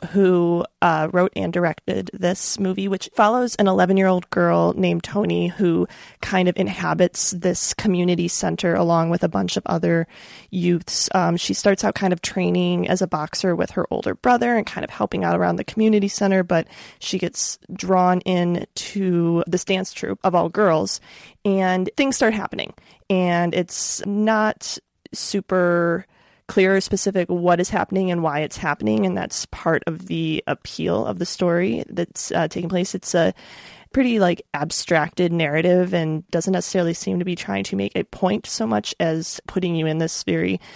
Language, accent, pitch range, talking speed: English, American, 170-190 Hz, 180 wpm